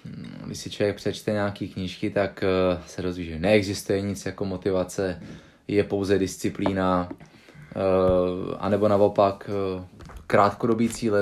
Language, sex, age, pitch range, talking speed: Czech, male, 20-39, 95-115 Hz, 110 wpm